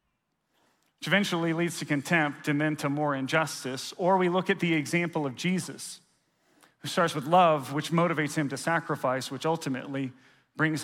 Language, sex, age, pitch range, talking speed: English, male, 40-59, 140-175 Hz, 165 wpm